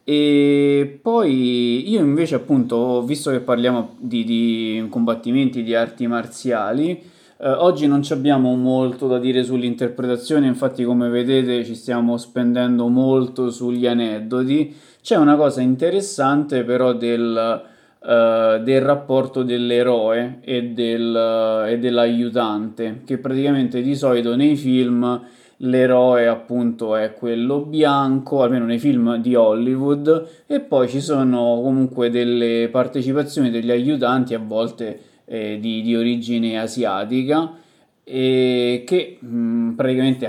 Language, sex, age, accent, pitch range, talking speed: Italian, male, 20-39, native, 120-135 Hz, 120 wpm